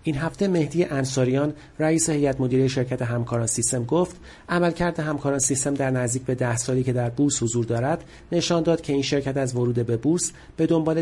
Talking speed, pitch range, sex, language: 190 wpm, 125-155 Hz, male, Persian